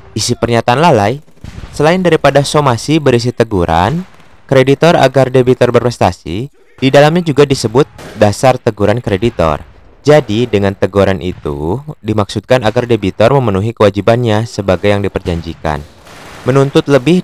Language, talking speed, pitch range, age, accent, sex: Indonesian, 110 wpm, 100-125 Hz, 20-39, native, male